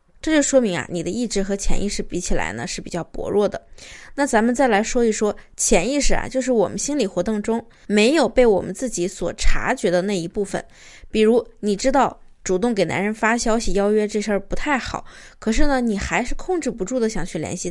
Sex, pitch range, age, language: female, 190-255 Hz, 20-39, Chinese